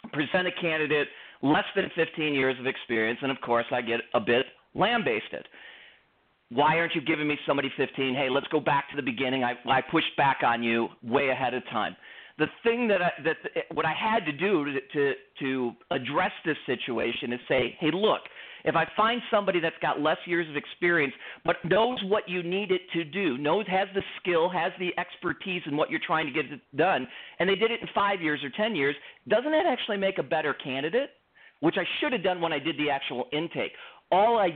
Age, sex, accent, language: 40-59, male, American, English